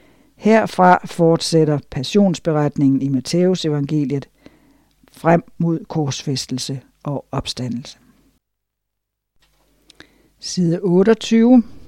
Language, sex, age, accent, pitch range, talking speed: Danish, female, 60-79, native, 145-180 Hz, 60 wpm